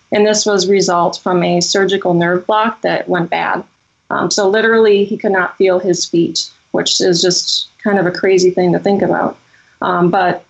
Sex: female